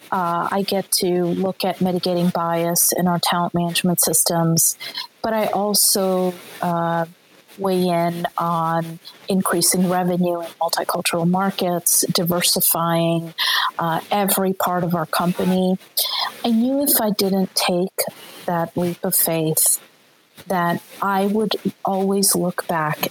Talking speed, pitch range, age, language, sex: 125 wpm, 175-210 Hz, 40-59, English, female